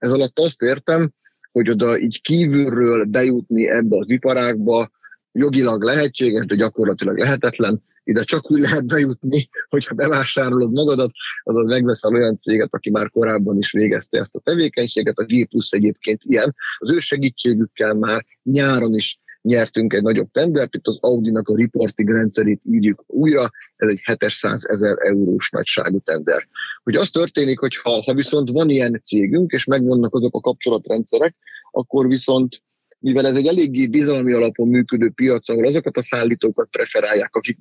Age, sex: 30-49, male